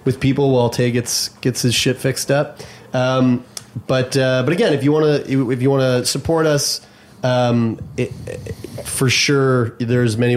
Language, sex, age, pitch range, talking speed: English, male, 30-49, 115-135 Hz, 185 wpm